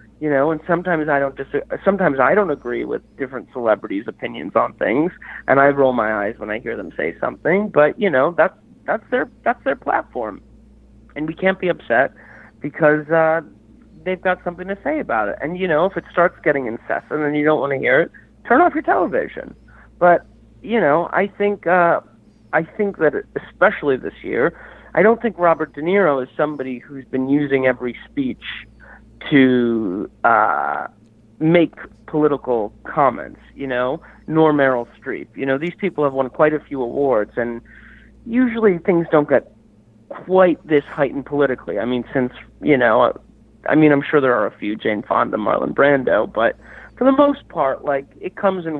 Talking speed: 185 wpm